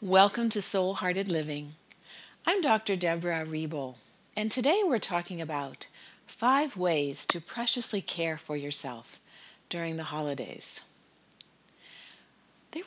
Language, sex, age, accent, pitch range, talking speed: English, female, 50-69, American, 160-210 Hz, 115 wpm